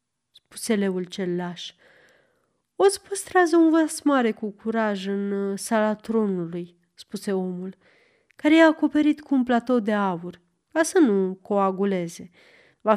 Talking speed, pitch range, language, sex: 140 wpm, 190-285 Hz, Romanian, female